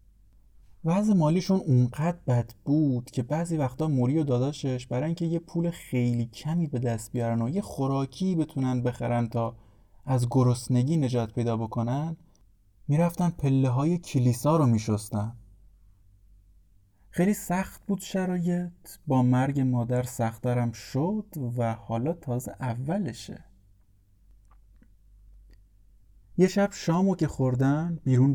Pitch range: 115-160 Hz